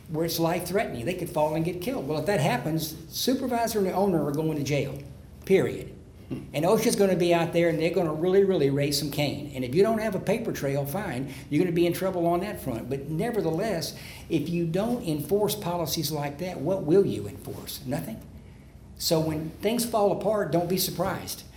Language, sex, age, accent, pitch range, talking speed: English, male, 60-79, American, 140-175 Hz, 210 wpm